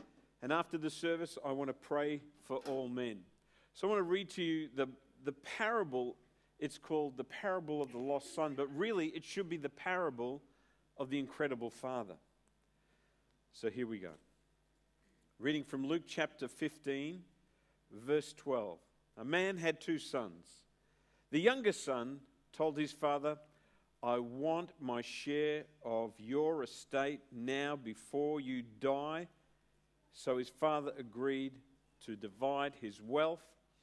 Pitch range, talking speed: 135-170 Hz, 145 wpm